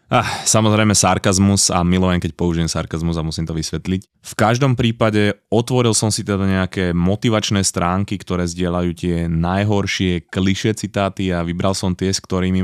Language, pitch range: Slovak, 90-110 Hz